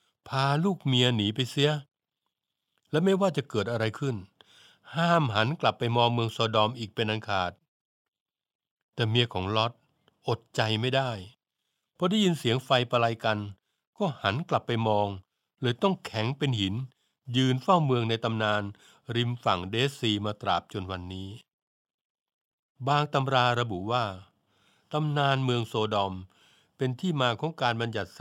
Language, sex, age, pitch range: Thai, male, 60-79, 105-135 Hz